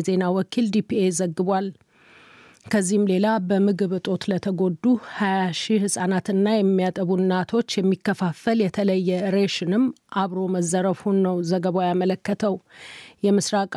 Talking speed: 85 wpm